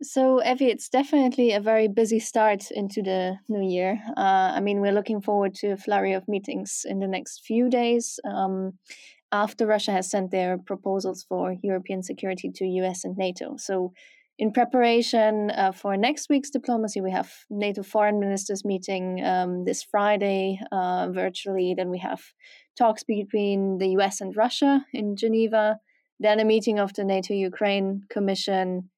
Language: English